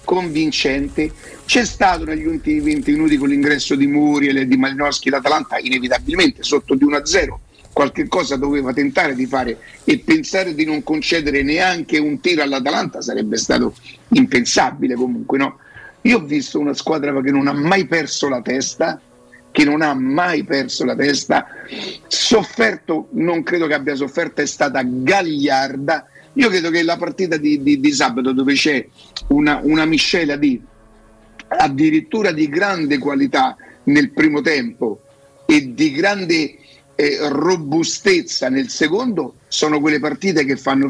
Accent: native